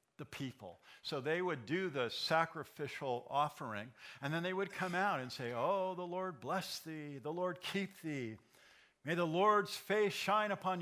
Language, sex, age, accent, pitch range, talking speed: English, male, 50-69, American, 130-175 Hz, 180 wpm